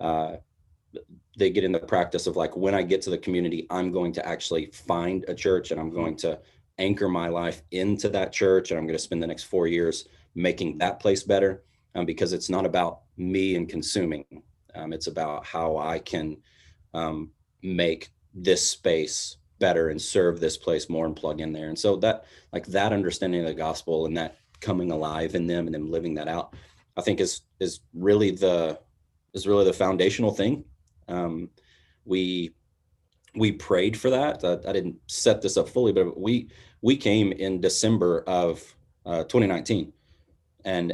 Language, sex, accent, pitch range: English, male, American, 80-95 Hz